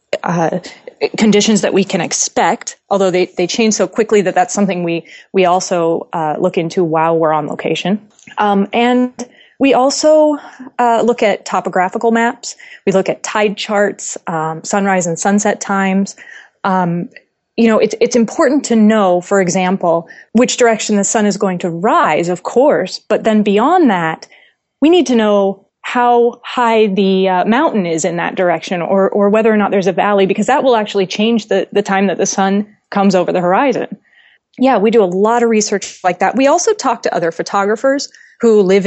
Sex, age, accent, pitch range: female, 30-49, American, 180-220 Hz